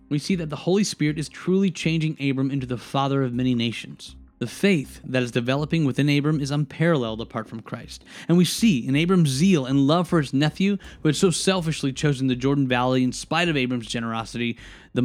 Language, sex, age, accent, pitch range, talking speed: English, male, 10-29, American, 125-170 Hz, 210 wpm